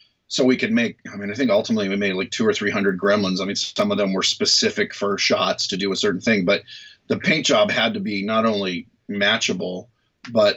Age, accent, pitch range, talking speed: 30-49, American, 100-140 Hz, 235 wpm